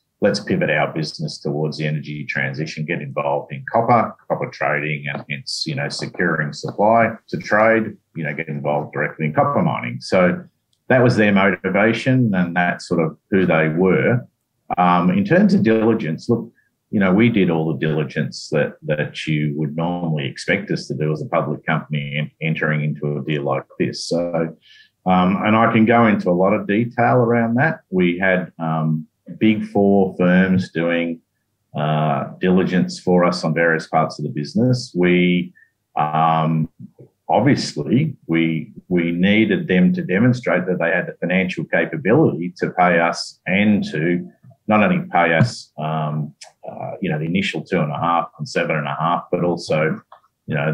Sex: male